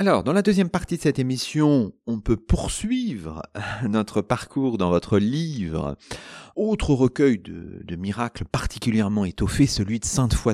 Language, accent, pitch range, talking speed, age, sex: French, French, 90-135 Hz, 150 wpm, 40-59, male